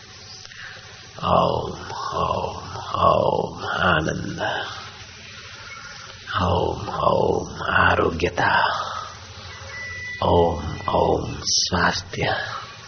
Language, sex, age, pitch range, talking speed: Hindi, male, 50-69, 95-110 Hz, 45 wpm